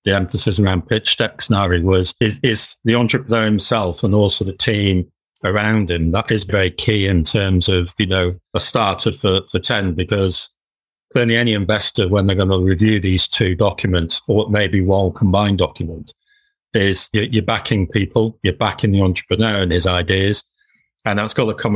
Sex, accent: male, British